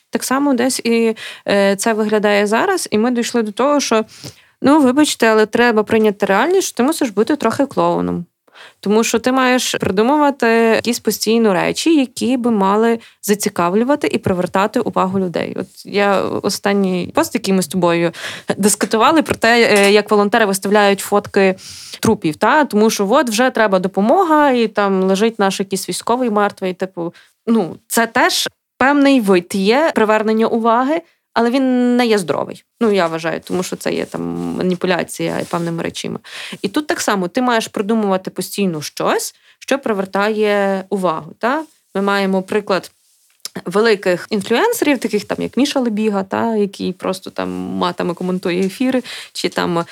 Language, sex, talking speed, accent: Ukrainian, female, 155 wpm, native